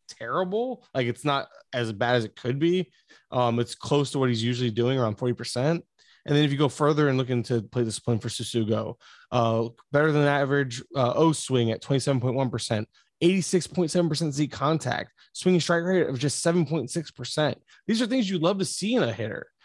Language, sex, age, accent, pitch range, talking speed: English, male, 20-39, American, 125-165 Hz, 190 wpm